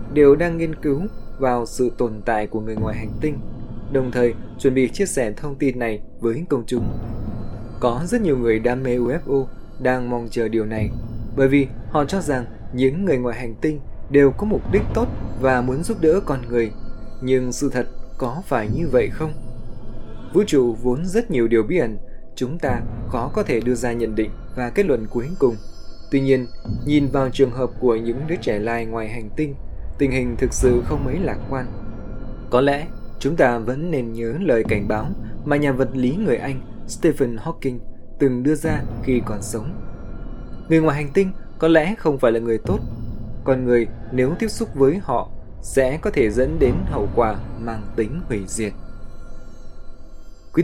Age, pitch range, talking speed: 20-39, 115-140 Hz, 195 wpm